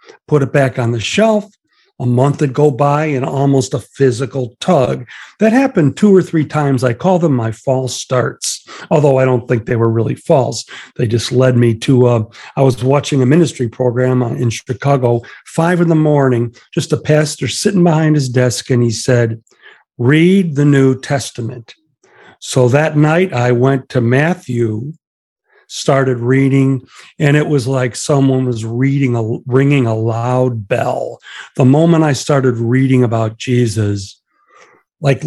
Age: 50-69